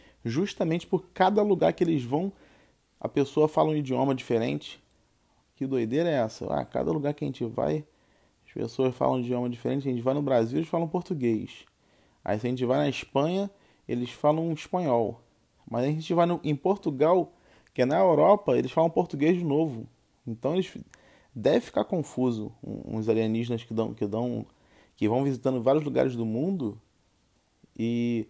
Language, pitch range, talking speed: Portuguese, 115-155 Hz, 180 wpm